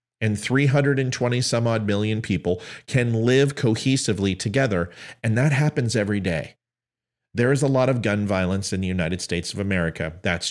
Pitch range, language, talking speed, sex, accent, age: 95-120 Hz, English, 155 wpm, male, American, 40-59